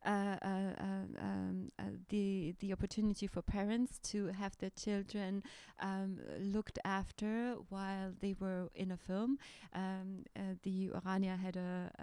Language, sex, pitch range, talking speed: English, female, 185-210 Hz, 145 wpm